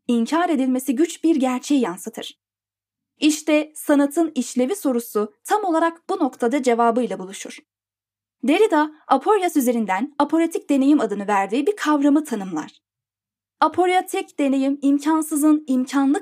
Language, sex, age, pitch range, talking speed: Turkish, female, 10-29, 230-310 Hz, 110 wpm